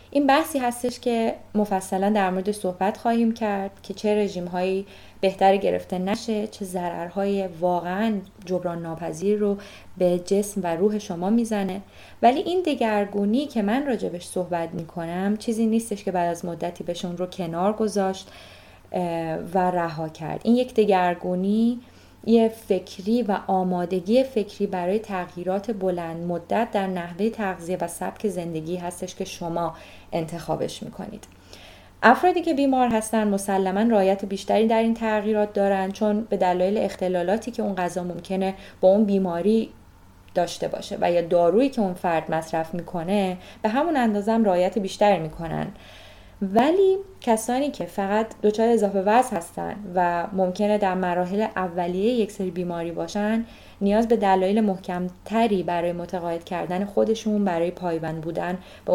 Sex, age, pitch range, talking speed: female, 20-39, 175-215 Hz, 145 wpm